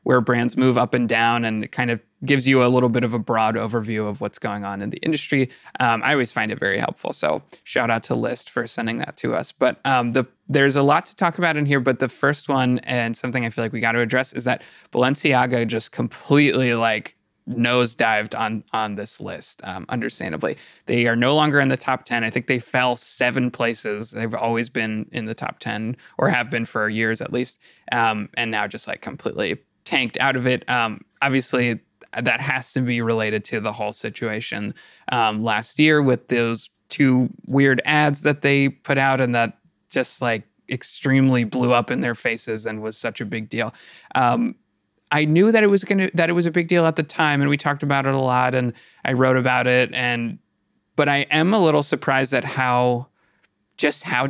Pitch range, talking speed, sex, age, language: 115-145 Hz, 215 wpm, male, 20-39, English